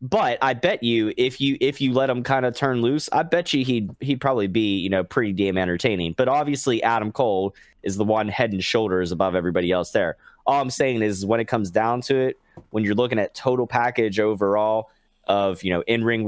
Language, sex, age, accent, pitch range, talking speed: English, male, 20-39, American, 95-110 Hz, 225 wpm